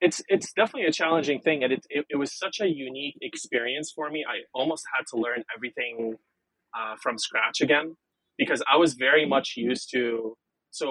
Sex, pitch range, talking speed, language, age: male, 115-160 Hz, 195 wpm, English, 20-39